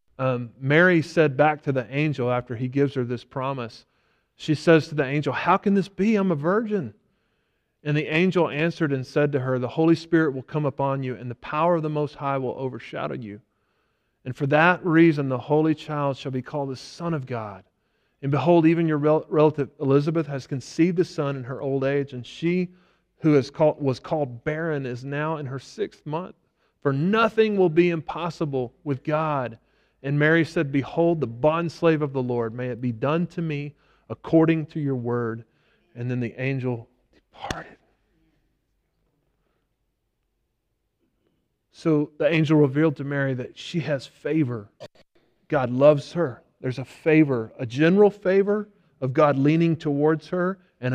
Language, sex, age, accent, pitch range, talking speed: English, male, 30-49, American, 130-160 Hz, 175 wpm